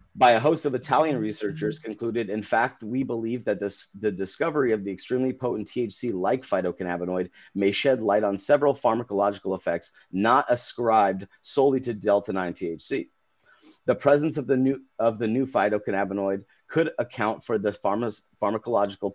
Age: 30-49